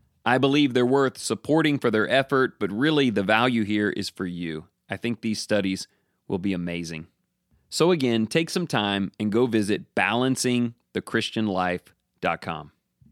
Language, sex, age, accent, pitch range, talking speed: English, male, 30-49, American, 85-125 Hz, 145 wpm